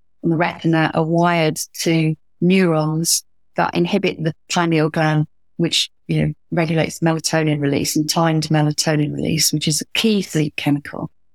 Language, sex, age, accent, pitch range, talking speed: English, female, 30-49, British, 155-195 Hz, 150 wpm